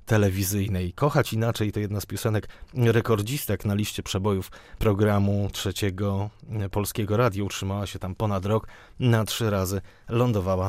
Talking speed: 135 wpm